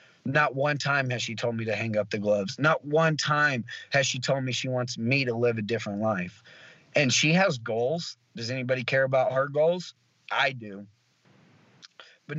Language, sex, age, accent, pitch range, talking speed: English, male, 30-49, American, 120-145 Hz, 195 wpm